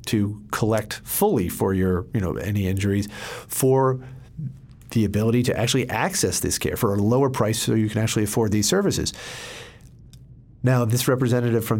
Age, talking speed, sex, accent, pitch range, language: 40-59, 165 wpm, male, American, 100-125 Hz, English